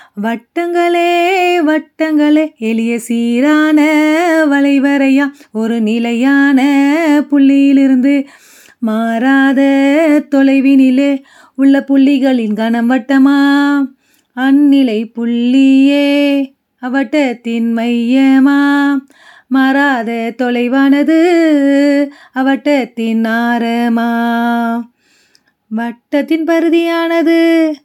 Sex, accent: female, native